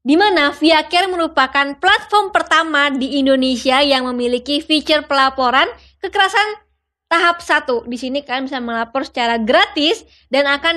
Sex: female